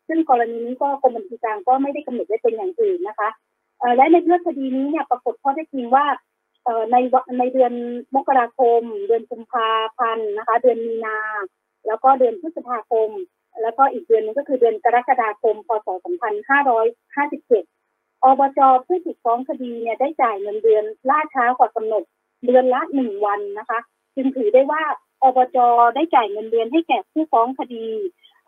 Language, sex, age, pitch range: Thai, female, 30-49, 225-300 Hz